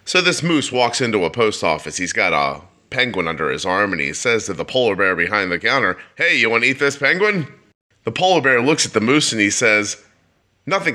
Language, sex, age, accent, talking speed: English, male, 30-49, American, 235 wpm